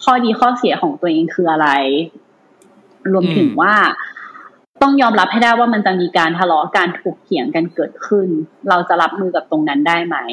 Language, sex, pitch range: Thai, female, 175-240 Hz